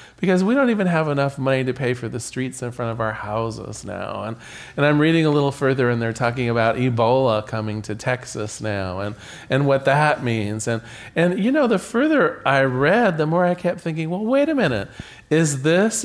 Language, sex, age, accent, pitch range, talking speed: English, male, 40-59, American, 125-175 Hz, 230 wpm